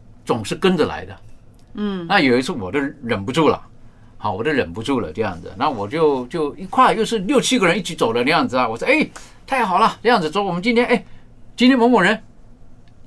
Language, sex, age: Chinese, male, 50-69